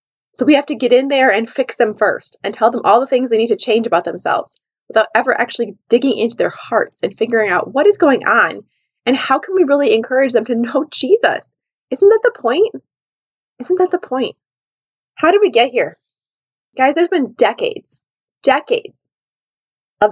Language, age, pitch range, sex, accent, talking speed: English, 20-39, 230-315 Hz, female, American, 195 wpm